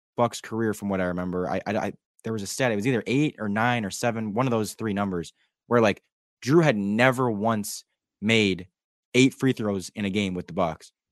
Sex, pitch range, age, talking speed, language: male, 100-125 Hz, 20-39, 225 wpm, English